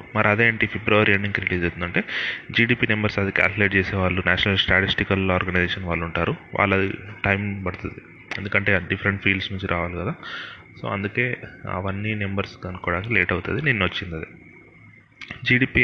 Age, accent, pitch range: 30-49, native, 95-115 Hz